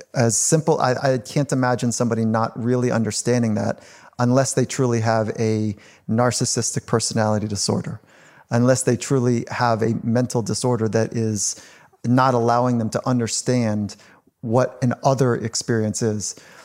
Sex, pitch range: male, 115-135 Hz